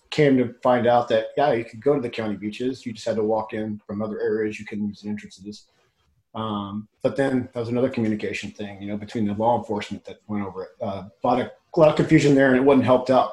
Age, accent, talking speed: 30-49, American, 260 wpm